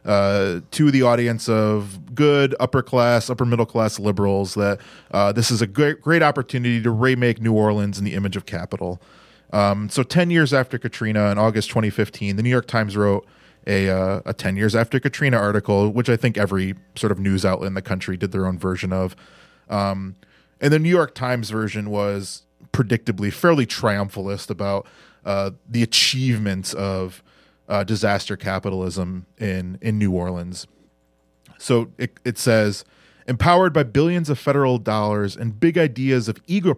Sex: male